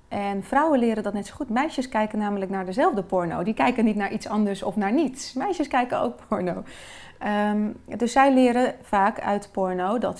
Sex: female